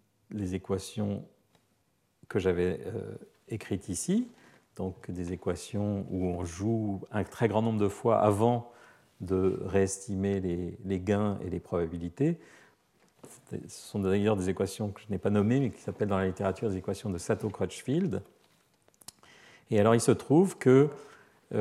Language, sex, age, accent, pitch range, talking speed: French, male, 50-69, French, 95-115 Hz, 155 wpm